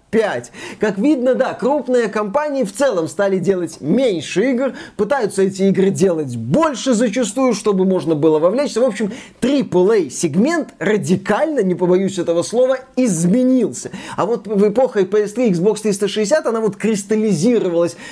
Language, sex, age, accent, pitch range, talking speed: Russian, male, 20-39, native, 185-225 Hz, 135 wpm